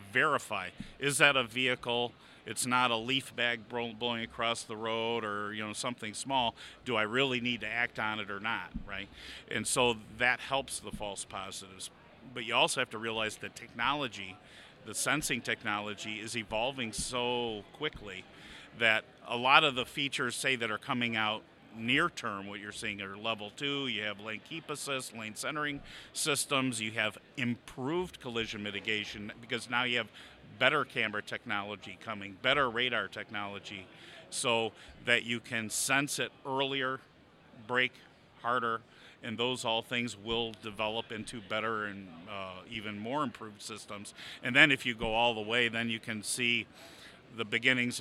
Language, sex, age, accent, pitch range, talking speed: English, male, 50-69, American, 110-125 Hz, 165 wpm